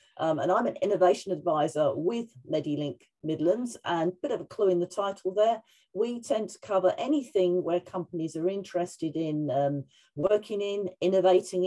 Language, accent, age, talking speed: English, British, 40-59, 170 wpm